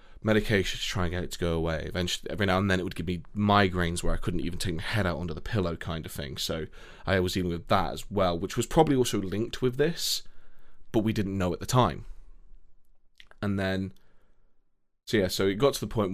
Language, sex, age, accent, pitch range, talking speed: English, male, 20-39, British, 85-105 Hz, 240 wpm